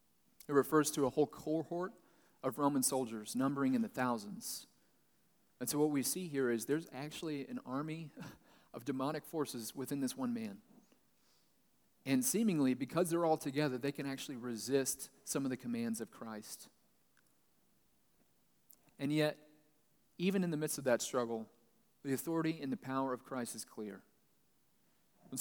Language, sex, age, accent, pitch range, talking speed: English, male, 40-59, American, 130-175 Hz, 155 wpm